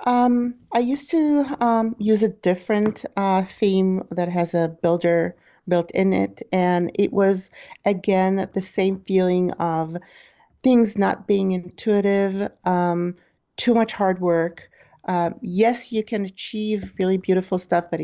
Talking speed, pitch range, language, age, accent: 145 wpm, 180-210 Hz, English, 40-59, American